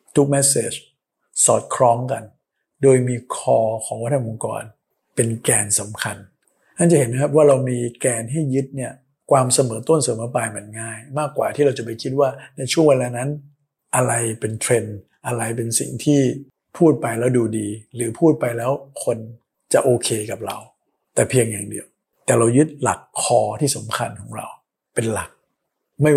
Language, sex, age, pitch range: Thai, male, 60-79, 115-135 Hz